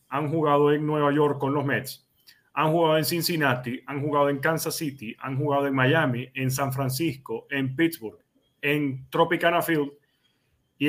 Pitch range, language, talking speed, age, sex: 130-165 Hz, Spanish, 165 wpm, 40-59, male